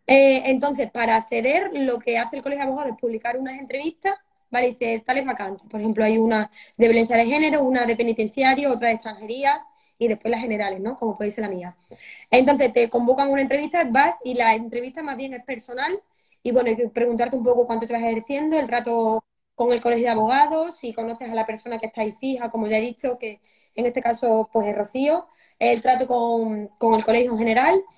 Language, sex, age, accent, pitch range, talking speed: Spanish, female, 20-39, Spanish, 225-275 Hz, 220 wpm